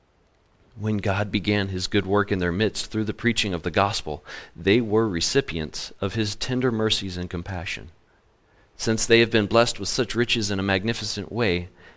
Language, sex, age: English, male, 40-59